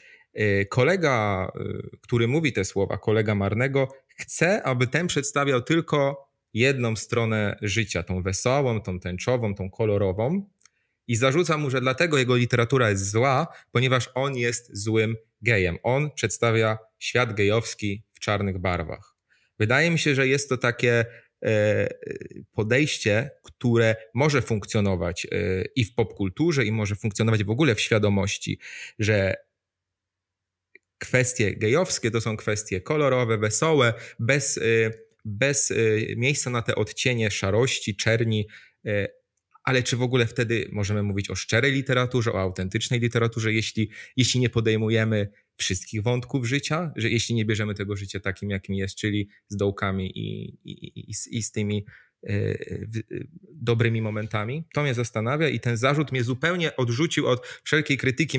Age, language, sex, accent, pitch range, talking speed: 30-49, Polish, male, native, 105-130 Hz, 135 wpm